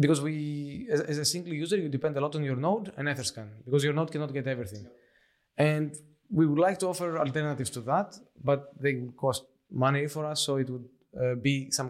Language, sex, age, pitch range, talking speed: English, male, 20-39, 130-155 Hz, 210 wpm